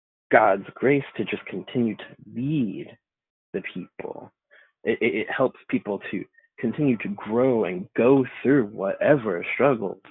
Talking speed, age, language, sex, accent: 135 wpm, 20-39, English, male, American